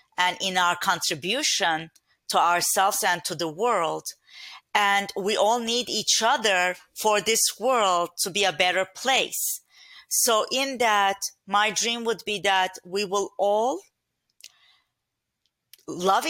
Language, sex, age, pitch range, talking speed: English, female, 40-59, 185-240 Hz, 135 wpm